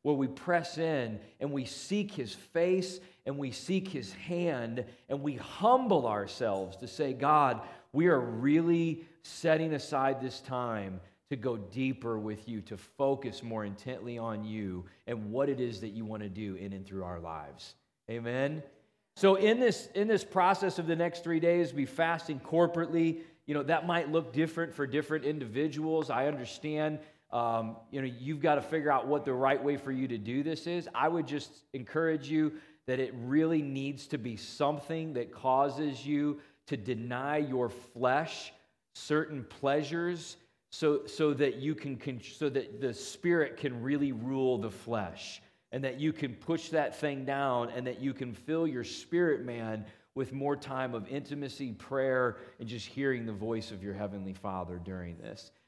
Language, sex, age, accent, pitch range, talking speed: English, male, 40-59, American, 120-155 Hz, 180 wpm